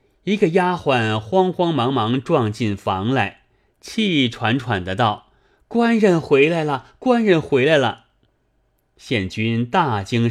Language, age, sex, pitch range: Chinese, 30-49, male, 105-145 Hz